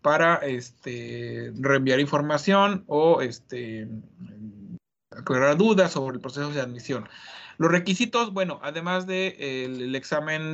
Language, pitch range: Spanish, 140-185 Hz